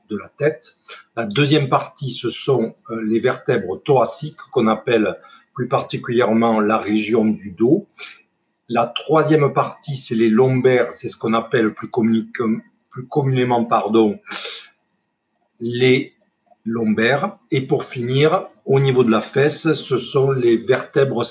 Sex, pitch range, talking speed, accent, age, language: male, 115-150 Hz, 130 wpm, French, 50-69, French